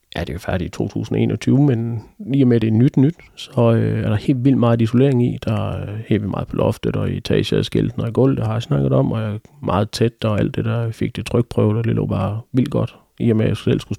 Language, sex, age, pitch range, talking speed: Danish, male, 30-49, 105-120 Hz, 300 wpm